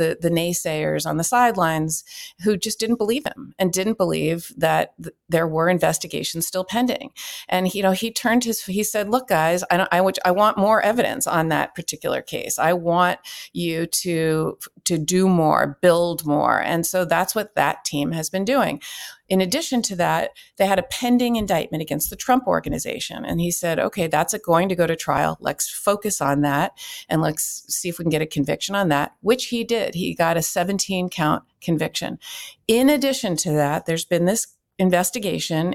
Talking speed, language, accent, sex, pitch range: 195 wpm, English, American, female, 160-200 Hz